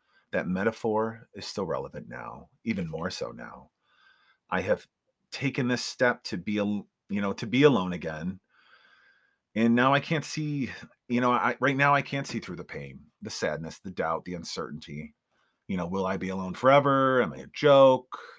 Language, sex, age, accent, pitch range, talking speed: English, male, 30-49, American, 95-130 Hz, 185 wpm